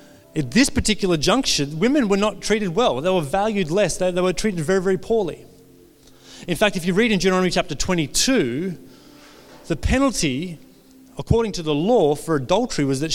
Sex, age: male, 30-49